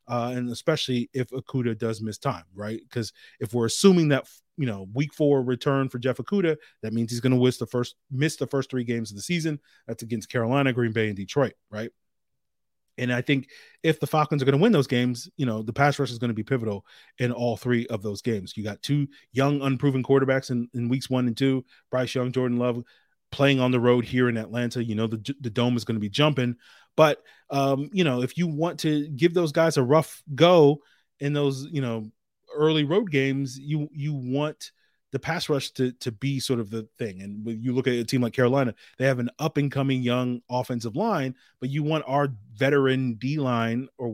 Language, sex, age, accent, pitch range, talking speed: English, male, 30-49, American, 120-140 Hz, 225 wpm